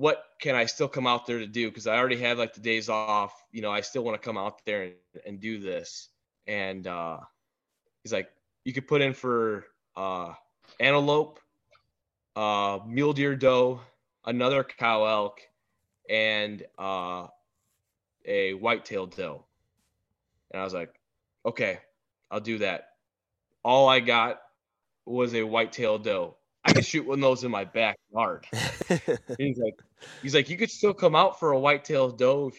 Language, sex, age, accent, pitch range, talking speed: English, male, 20-39, American, 110-140 Hz, 175 wpm